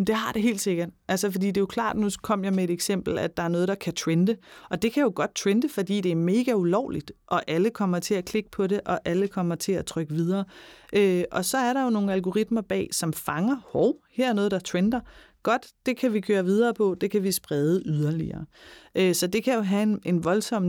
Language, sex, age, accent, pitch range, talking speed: Danish, female, 30-49, native, 165-210 Hz, 255 wpm